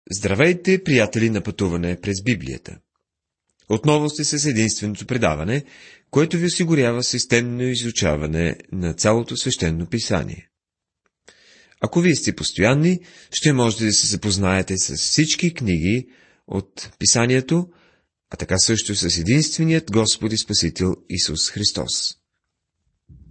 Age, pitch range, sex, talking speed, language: 30-49, 90-135 Hz, male, 115 wpm, Bulgarian